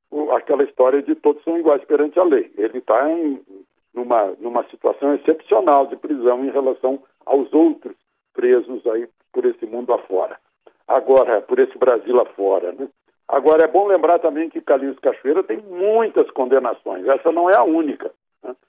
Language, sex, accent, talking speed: Portuguese, male, Brazilian, 165 wpm